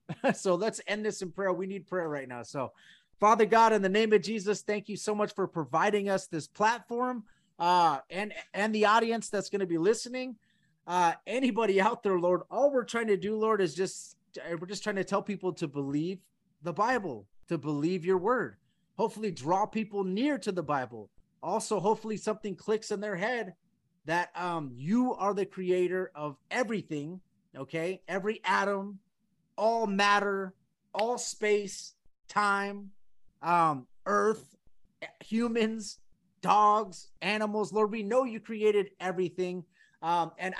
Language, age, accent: English, 30-49, American